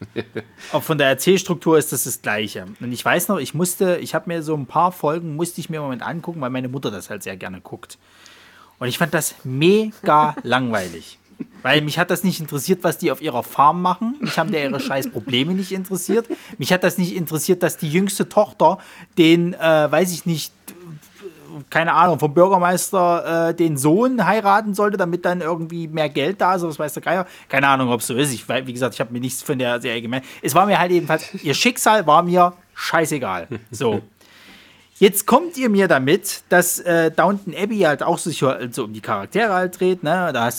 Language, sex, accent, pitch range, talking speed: German, male, German, 125-180 Hz, 215 wpm